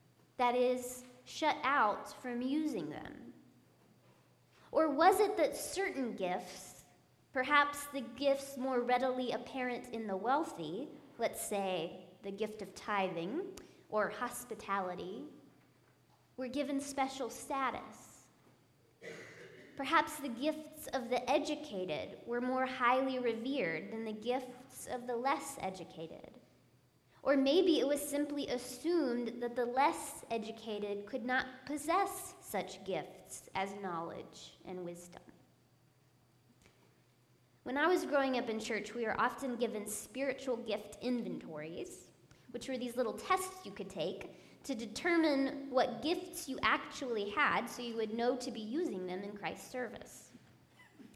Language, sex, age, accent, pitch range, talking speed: English, female, 20-39, American, 220-285 Hz, 130 wpm